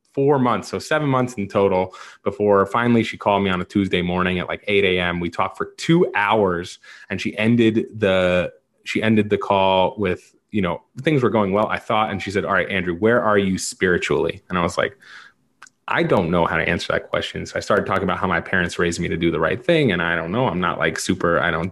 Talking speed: 245 wpm